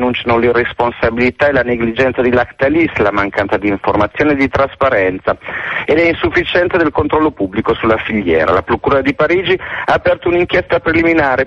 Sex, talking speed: male, 145 wpm